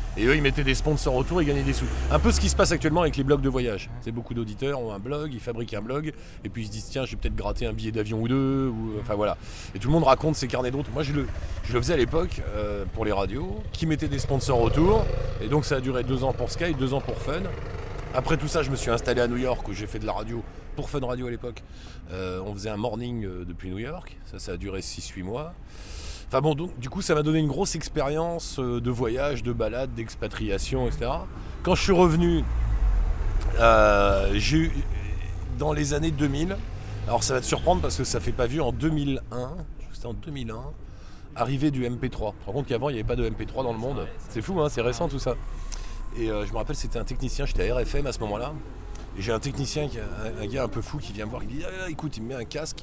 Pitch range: 105-140 Hz